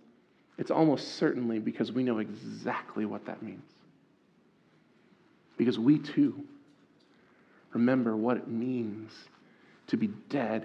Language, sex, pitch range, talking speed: English, male, 115-150 Hz, 115 wpm